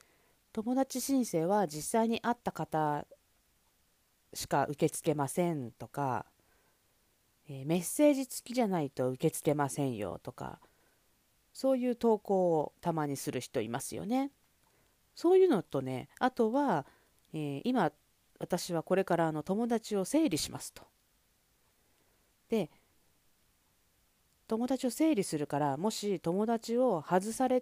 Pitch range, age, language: 140-230 Hz, 40-59, Japanese